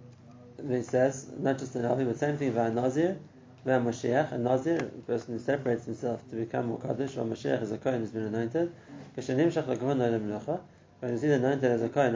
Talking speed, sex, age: 190 wpm, male, 30-49